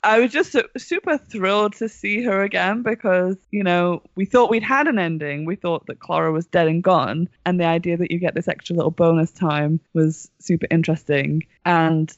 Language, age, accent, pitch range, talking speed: English, 20-39, British, 165-220 Hz, 200 wpm